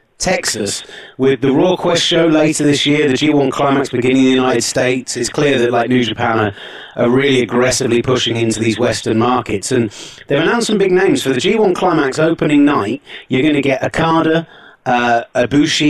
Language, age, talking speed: English, 30-49, 190 wpm